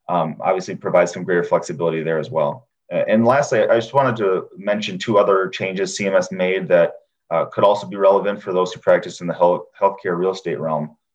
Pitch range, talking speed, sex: 90-115 Hz, 210 wpm, male